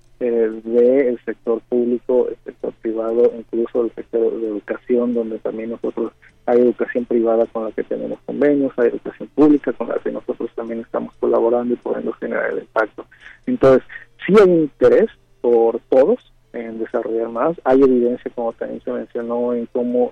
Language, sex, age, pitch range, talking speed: Spanish, male, 30-49, 115-130 Hz, 175 wpm